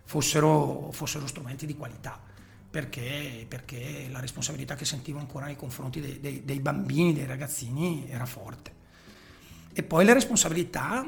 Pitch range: 130-160 Hz